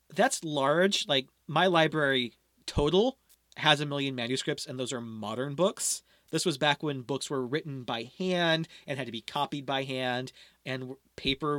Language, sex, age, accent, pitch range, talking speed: English, male, 30-49, American, 130-155 Hz, 170 wpm